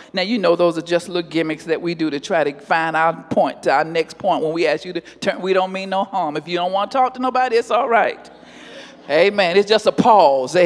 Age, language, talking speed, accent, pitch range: 40-59, English, 270 wpm, American, 170-225 Hz